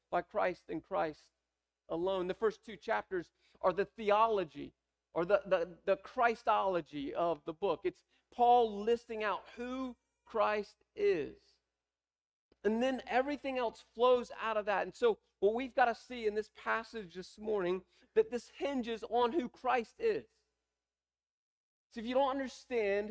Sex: male